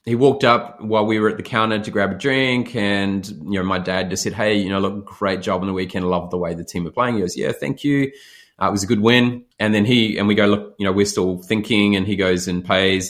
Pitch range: 100-120 Hz